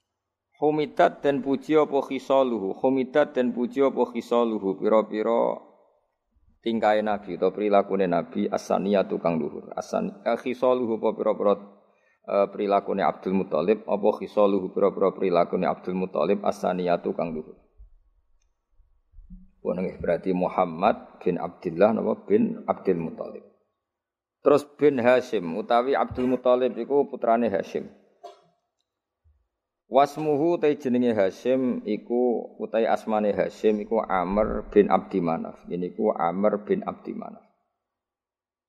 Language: Indonesian